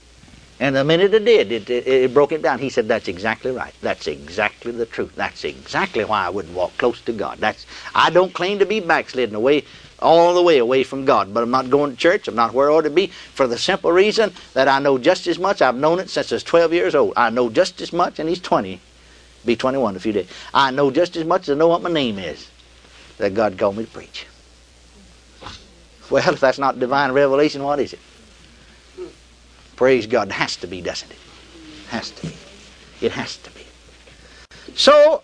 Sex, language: male, English